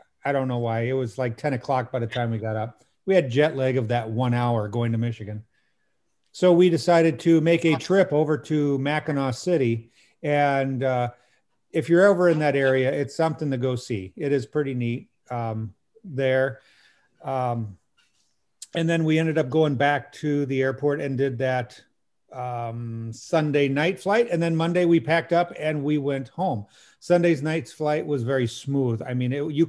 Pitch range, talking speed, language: 125-155 Hz, 190 wpm, English